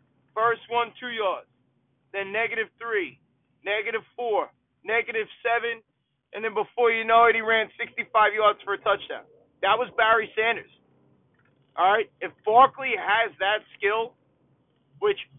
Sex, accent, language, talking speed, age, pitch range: male, American, English, 140 wpm, 30-49, 195-235 Hz